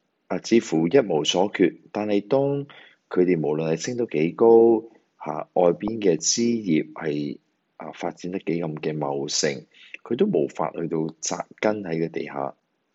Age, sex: 30-49, male